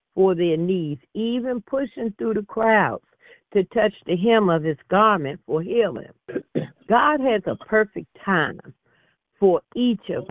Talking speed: 145 wpm